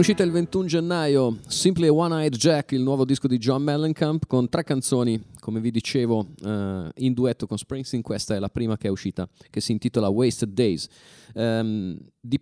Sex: male